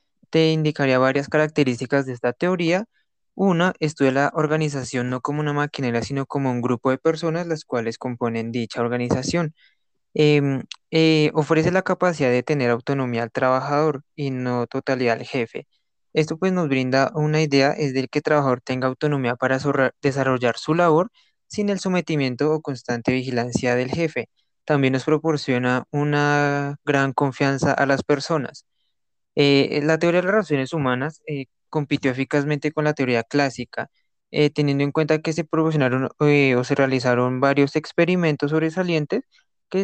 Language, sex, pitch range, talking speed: Spanish, male, 130-155 Hz, 160 wpm